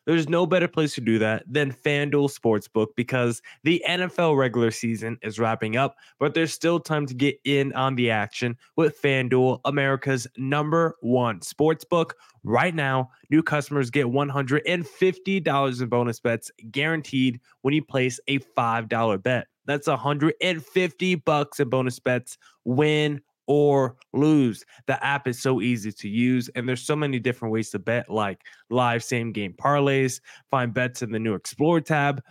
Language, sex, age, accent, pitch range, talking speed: English, male, 20-39, American, 125-155 Hz, 160 wpm